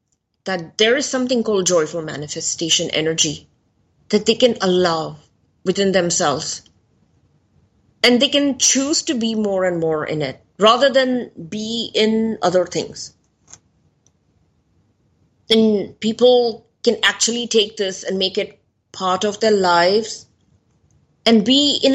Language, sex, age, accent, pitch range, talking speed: English, female, 30-49, Indian, 180-245 Hz, 130 wpm